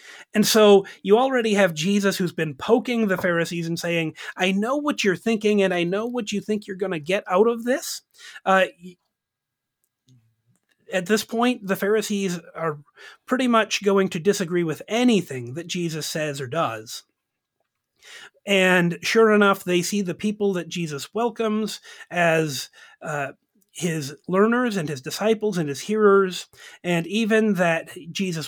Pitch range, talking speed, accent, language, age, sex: 165-215 Hz, 155 wpm, American, English, 30-49, male